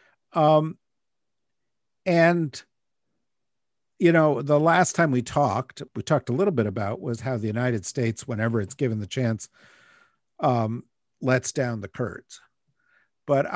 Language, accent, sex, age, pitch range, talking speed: English, American, male, 50-69, 110-140 Hz, 135 wpm